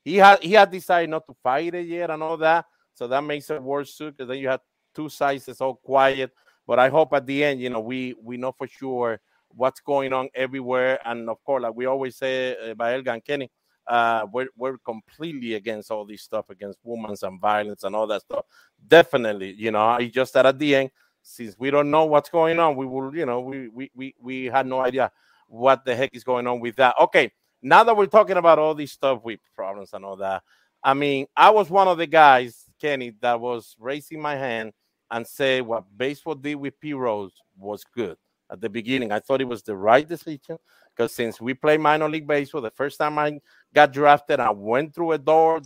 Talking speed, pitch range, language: 225 wpm, 120-150 Hz, English